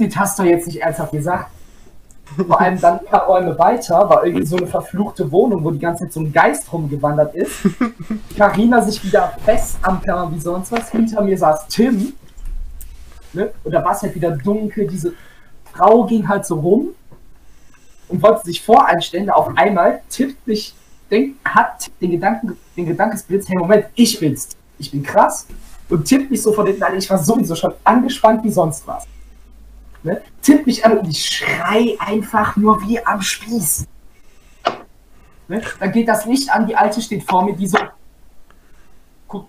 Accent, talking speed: German, 170 wpm